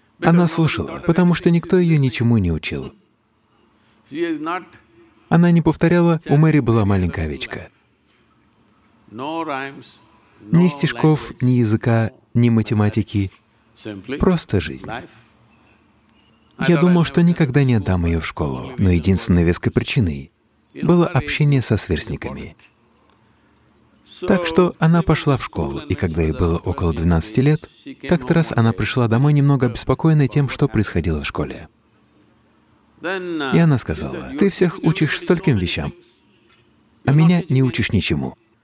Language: English